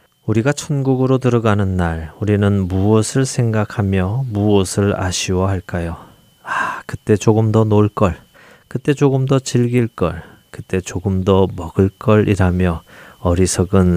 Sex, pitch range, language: male, 90-120 Hz, Korean